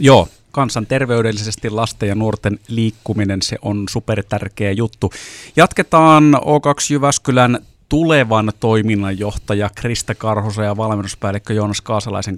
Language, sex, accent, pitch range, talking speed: Finnish, male, native, 110-135 Hz, 105 wpm